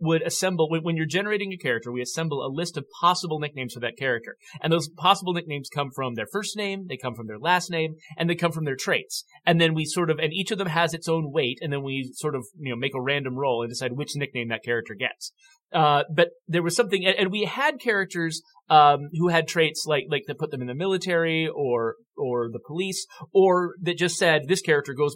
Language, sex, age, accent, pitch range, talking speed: English, male, 30-49, American, 135-185 Hz, 240 wpm